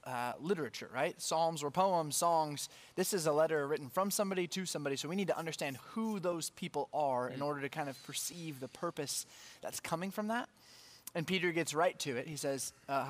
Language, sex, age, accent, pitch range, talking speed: English, male, 20-39, American, 140-175 Hz, 210 wpm